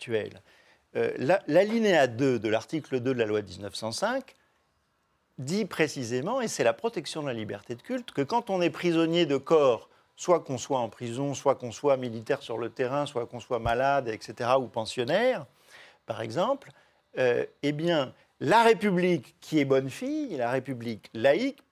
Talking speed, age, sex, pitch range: 175 wpm, 40-59, male, 125-190 Hz